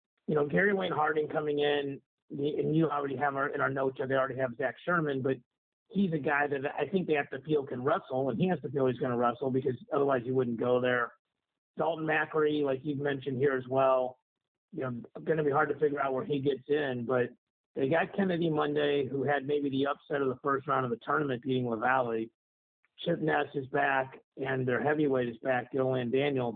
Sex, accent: male, American